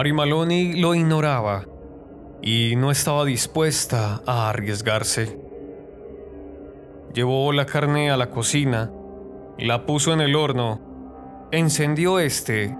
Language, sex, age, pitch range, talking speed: Spanish, male, 20-39, 105-145 Hz, 105 wpm